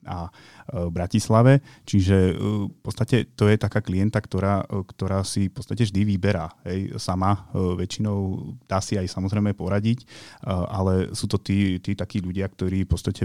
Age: 30-49